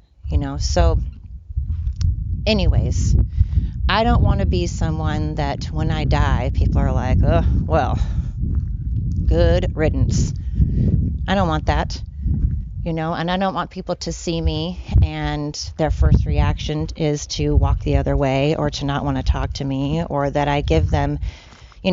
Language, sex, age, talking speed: English, female, 30-49, 160 wpm